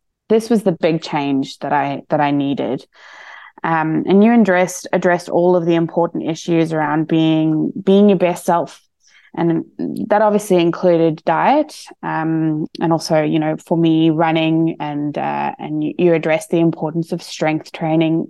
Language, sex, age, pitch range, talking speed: English, female, 20-39, 155-190 Hz, 165 wpm